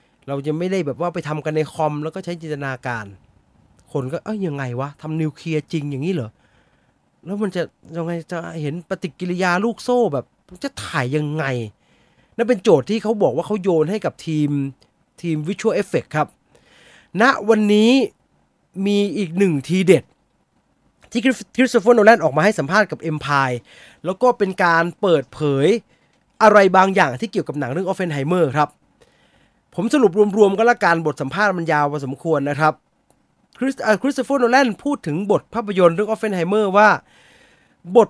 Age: 20-39